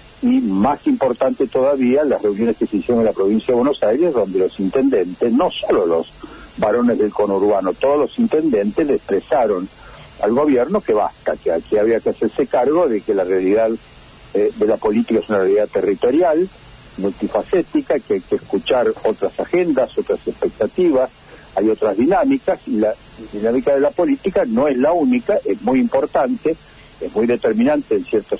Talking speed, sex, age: 170 wpm, male, 70-89